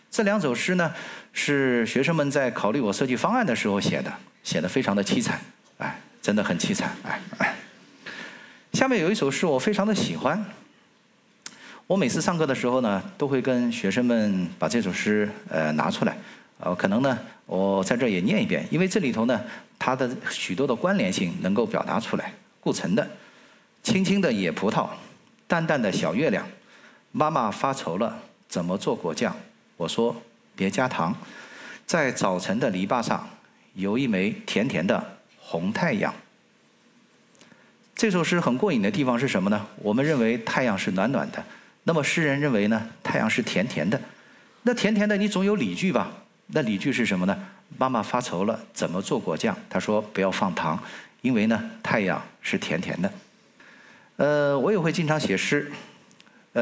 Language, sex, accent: Chinese, male, native